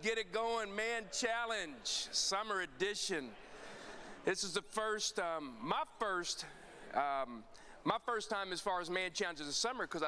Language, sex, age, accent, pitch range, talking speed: English, male, 40-59, American, 155-220 Hz, 155 wpm